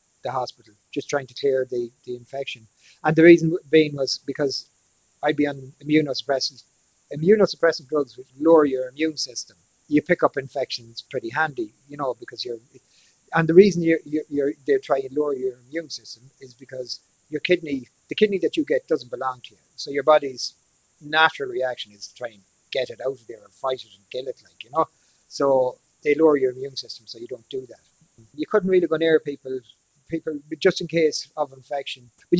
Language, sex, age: English, male, 30-49